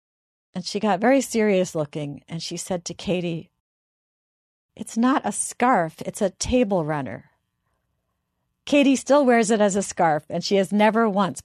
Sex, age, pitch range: female, 50-69, 170-230 Hz